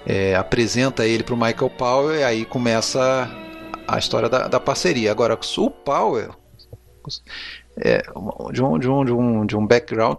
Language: Portuguese